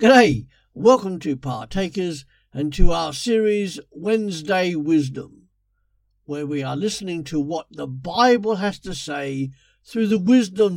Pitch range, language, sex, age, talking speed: 145-190 Hz, English, male, 50-69, 135 wpm